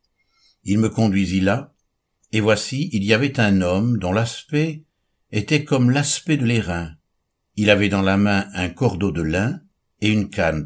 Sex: male